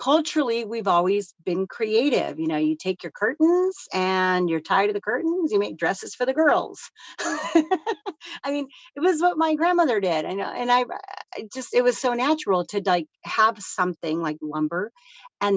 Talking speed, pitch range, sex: 180 wpm, 175-265 Hz, female